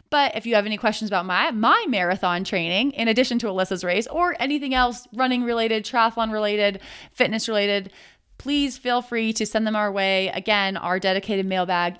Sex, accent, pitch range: female, American, 190-235 Hz